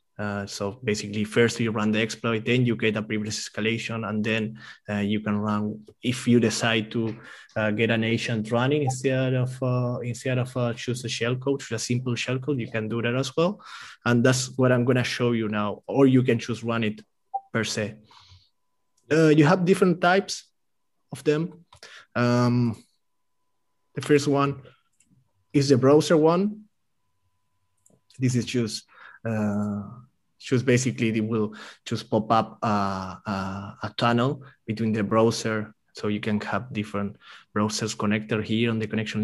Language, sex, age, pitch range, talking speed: English, male, 20-39, 110-130 Hz, 160 wpm